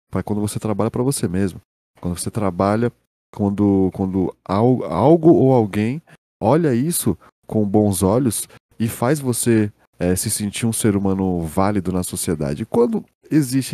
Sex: male